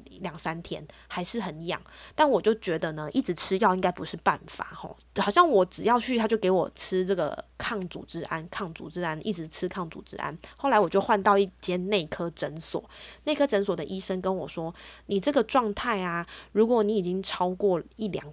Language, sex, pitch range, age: Chinese, female, 170-210 Hz, 20-39